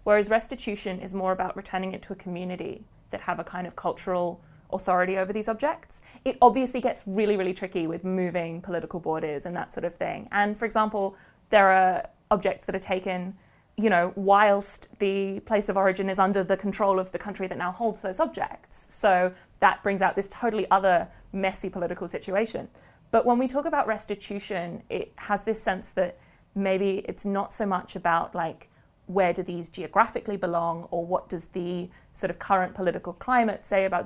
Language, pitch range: English, 175-205 Hz